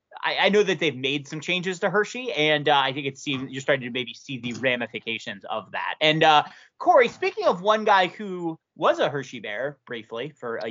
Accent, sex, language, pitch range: American, male, English, 150-215 Hz